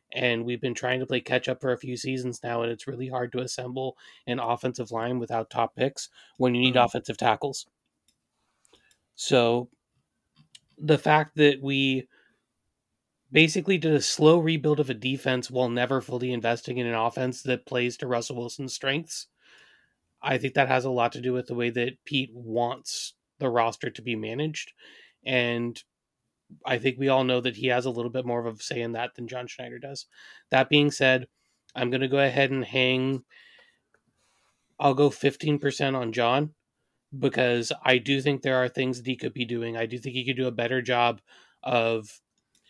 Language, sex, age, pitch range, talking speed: English, male, 30-49, 120-135 Hz, 190 wpm